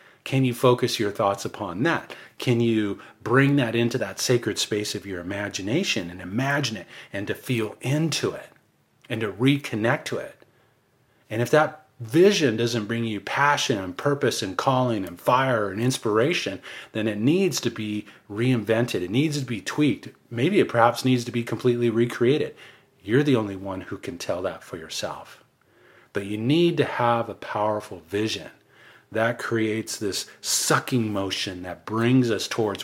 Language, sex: English, male